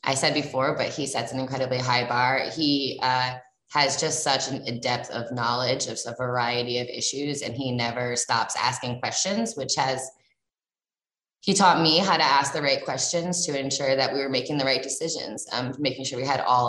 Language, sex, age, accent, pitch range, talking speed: English, female, 20-39, American, 130-150 Hz, 200 wpm